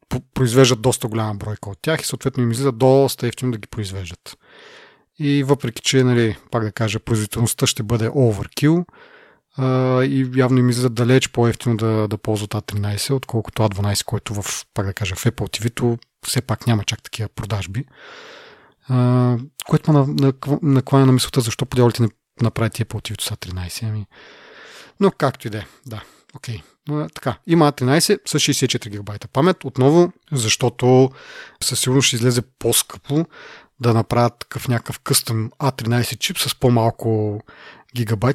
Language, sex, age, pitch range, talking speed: Bulgarian, male, 30-49, 110-135 Hz, 150 wpm